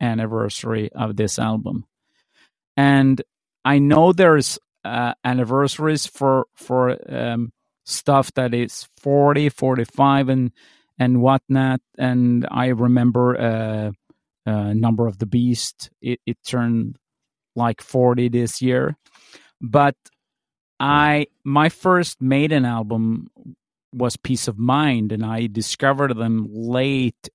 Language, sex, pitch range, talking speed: English, male, 115-135 Hz, 115 wpm